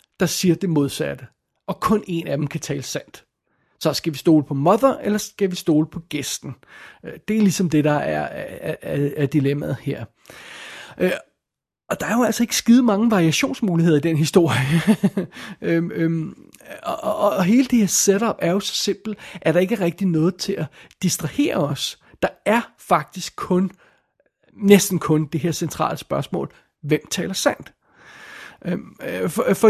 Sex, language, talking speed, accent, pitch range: male, Danish, 170 wpm, native, 155-195 Hz